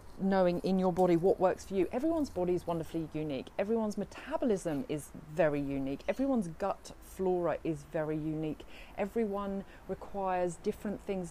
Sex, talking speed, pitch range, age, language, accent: female, 150 wpm, 165-205 Hz, 30-49, English, British